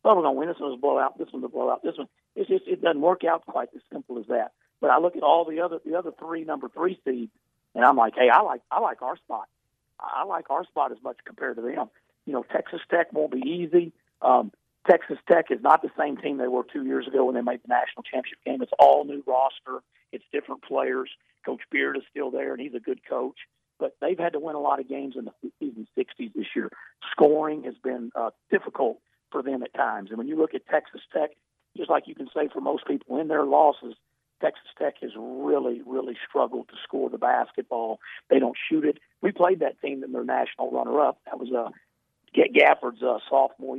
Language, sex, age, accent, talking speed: English, male, 50-69, American, 240 wpm